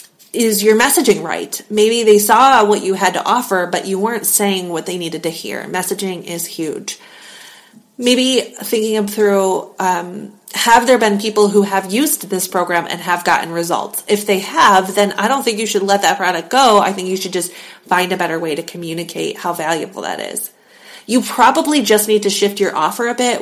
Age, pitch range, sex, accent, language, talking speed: 30-49, 180-215 Hz, female, American, English, 205 wpm